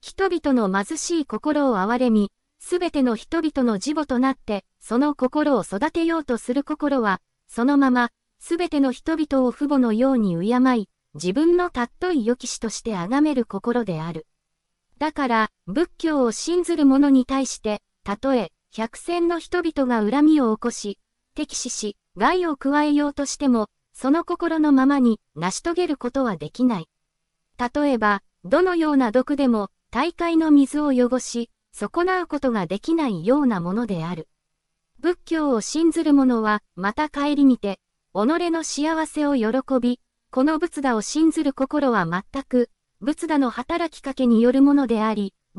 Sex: female